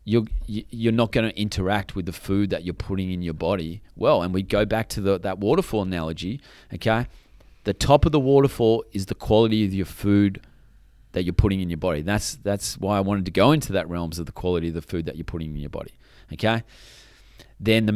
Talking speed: 225 wpm